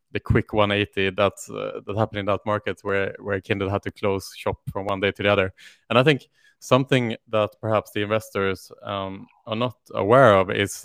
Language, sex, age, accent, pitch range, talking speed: English, male, 20-39, Norwegian, 100-115 Hz, 210 wpm